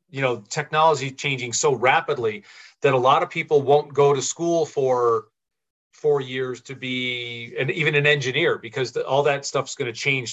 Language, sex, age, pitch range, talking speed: English, male, 40-59, 125-165 Hz, 185 wpm